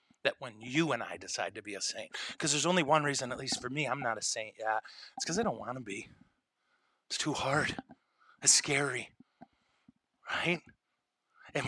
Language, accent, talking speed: English, American, 195 wpm